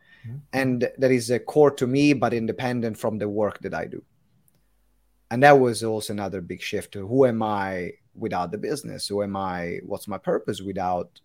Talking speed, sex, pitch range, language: 185 wpm, male, 110-135 Hz, English